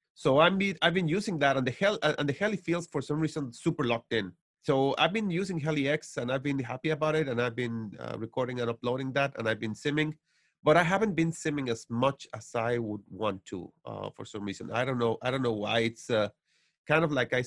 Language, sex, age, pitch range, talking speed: English, male, 30-49, 115-150 Hz, 250 wpm